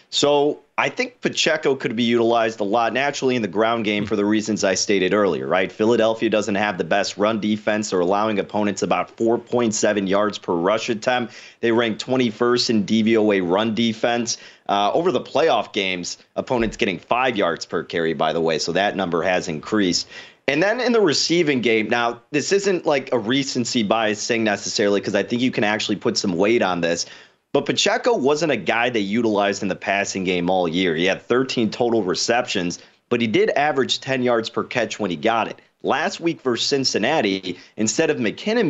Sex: male